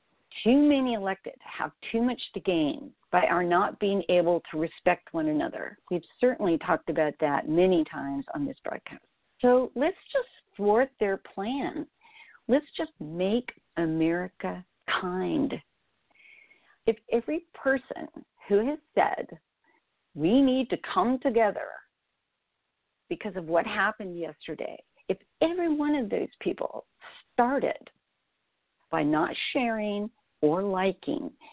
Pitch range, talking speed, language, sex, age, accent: 175-270 Hz, 125 wpm, English, female, 50-69, American